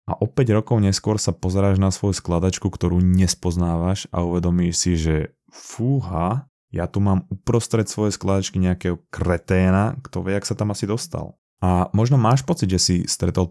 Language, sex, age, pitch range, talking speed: Slovak, male, 20-39, 85-105 Hz, 170 wpm